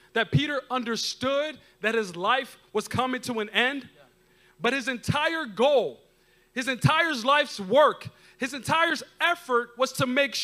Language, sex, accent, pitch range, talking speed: English, male, American, 245-310 Hz, 145 wpm